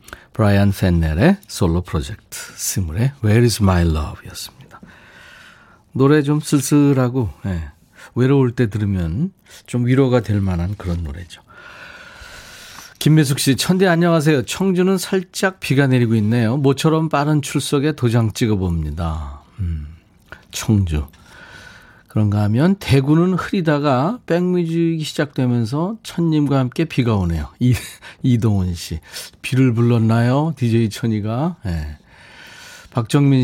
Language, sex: Korean, male